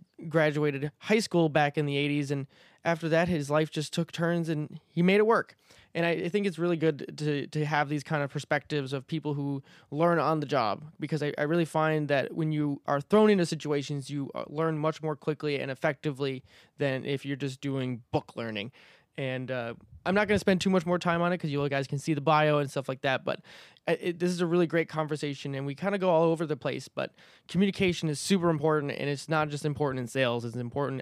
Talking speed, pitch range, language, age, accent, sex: 235 wpm, 140-165 Hz, English, 20-39, American, male